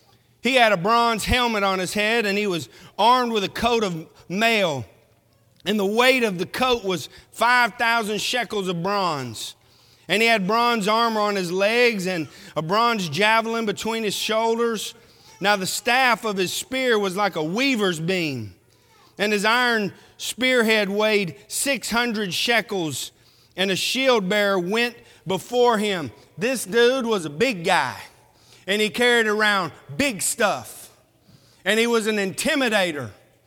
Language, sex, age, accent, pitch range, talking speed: English, male, 40-59, American, 180-245 Hz, 150 wpm